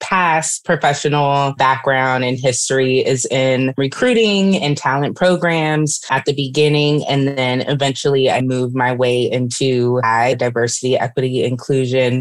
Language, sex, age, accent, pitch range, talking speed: English, female, 20-39, American, 130-155 Hz, 125 wpm